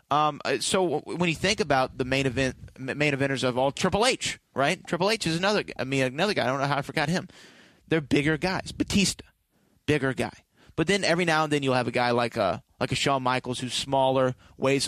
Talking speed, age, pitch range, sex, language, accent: 220 wpm, 30-49, 120-145 Hz, male, English, American